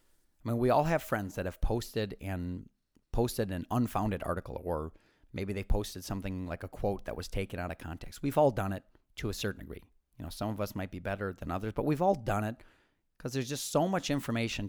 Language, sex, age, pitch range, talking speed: English, male, 30-49, 100-130 Hz, 235 wpm